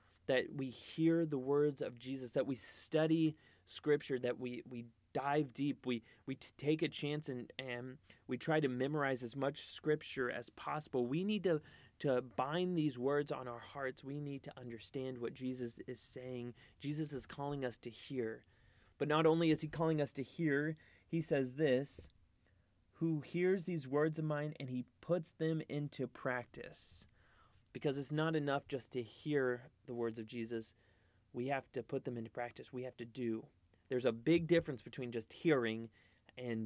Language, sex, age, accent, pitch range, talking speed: English, male, 30-49, American, 120-150 Hz, 180 wpm